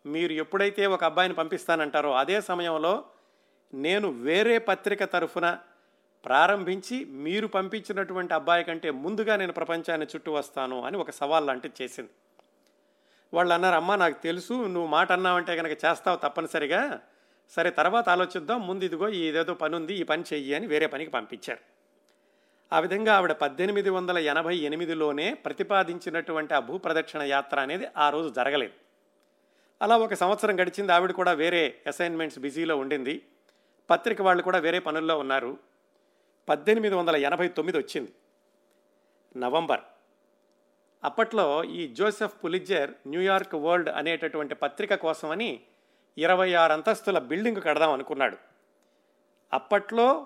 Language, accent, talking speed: Telugu, native, 125 wpm